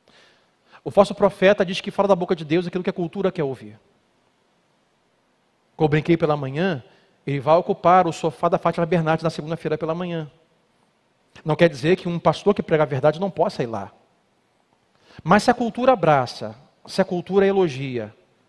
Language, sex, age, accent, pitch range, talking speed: Portuguese, male, 40-59, Brazilian, 140-180 Hz, 180 wpm